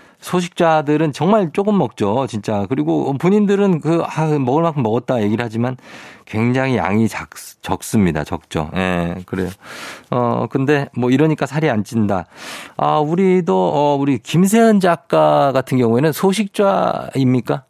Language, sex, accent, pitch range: Korean, male, native, 115-185 Hz